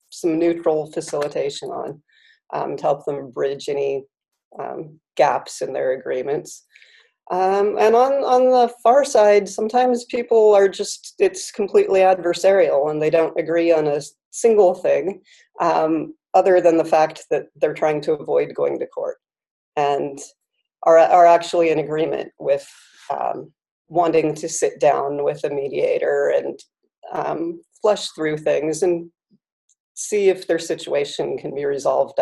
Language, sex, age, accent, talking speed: English, female, 40-59, American, 145 wpm